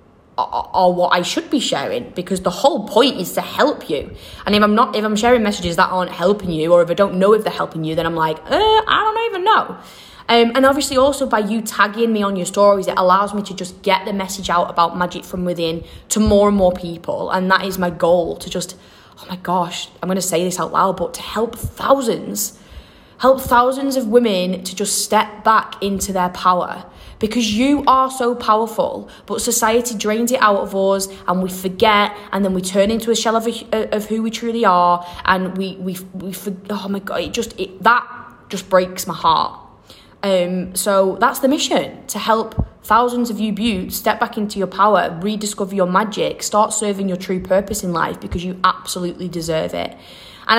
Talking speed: 215 wpm